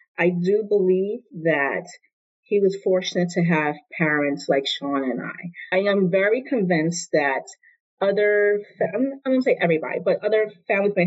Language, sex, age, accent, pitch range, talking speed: English, female, 30-49, American, 155-195 Hz, 170 wpm